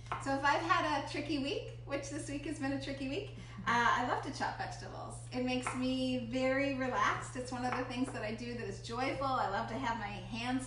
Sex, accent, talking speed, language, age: female, American, 240 wpm, English, 30-49